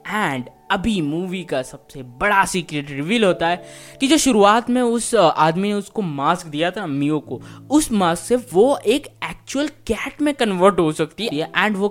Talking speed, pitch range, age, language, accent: 185 wpm, 145-210 Hz, 20-39, Hindi, native